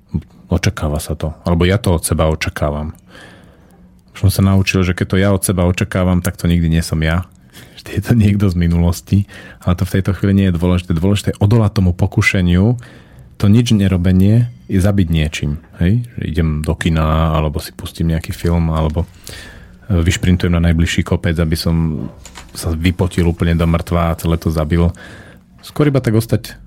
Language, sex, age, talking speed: Slovak, male, 40-59, 175 wpm